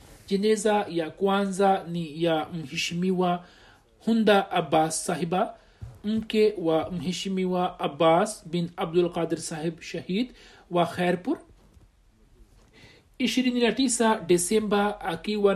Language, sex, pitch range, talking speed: Swahili, male, 170-210 Hz, 95 wpm